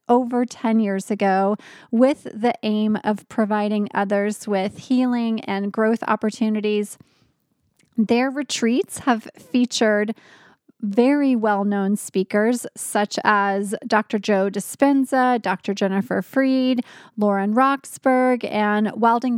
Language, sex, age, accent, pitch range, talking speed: English, female, 20-39, American, 210-255 Hz, 105 wpm